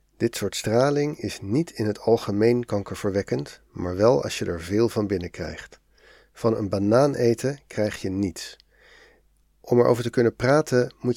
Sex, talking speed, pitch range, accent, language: male, 160 wpm, 100-120 Hz, Dutch, Dutch